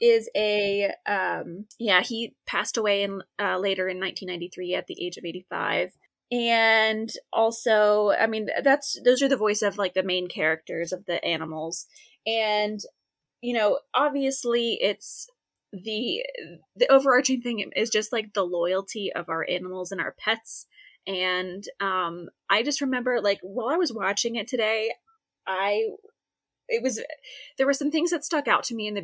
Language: English